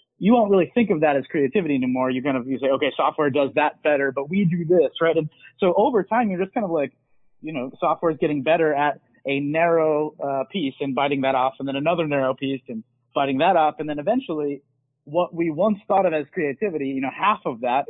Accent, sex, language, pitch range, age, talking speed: American, male, English, 140-175 Hz, 30-49, 240 wpm